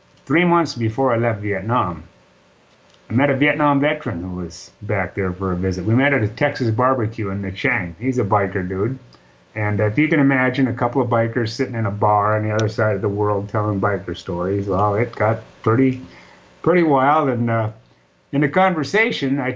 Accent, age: American, 30-49